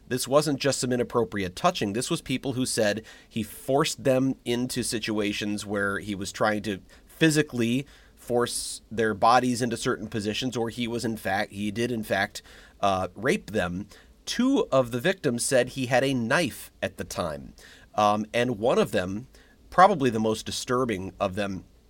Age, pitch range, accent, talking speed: 30-49, 105-130 Hz, American, 175 wpm